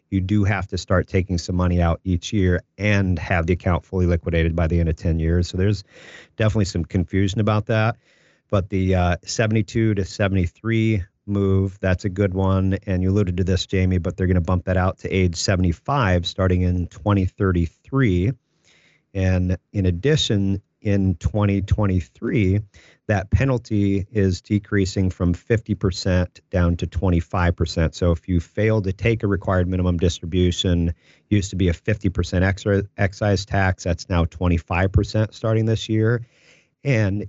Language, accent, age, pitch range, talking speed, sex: English, American, 40-59, 90-105 Hz, 160 wpm, male